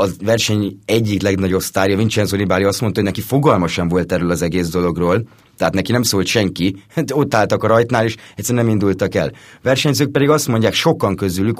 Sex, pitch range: male, 95-110 Hz